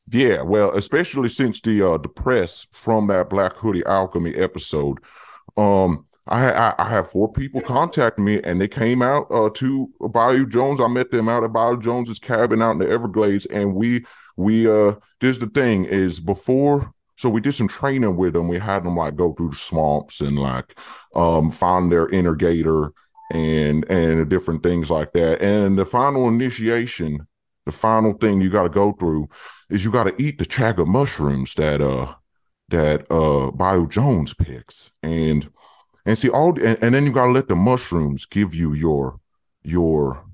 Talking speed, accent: 185 wpm, American